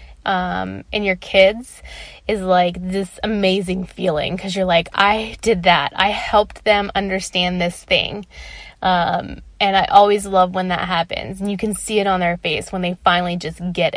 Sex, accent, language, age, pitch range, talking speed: female, American, English, 20-39, 180-210 Hz, 180 wpm